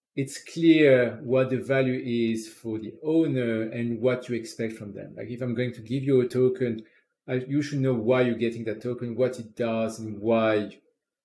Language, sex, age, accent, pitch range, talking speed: English, male, 40-59, French, 115-130 Hz, 205 wpm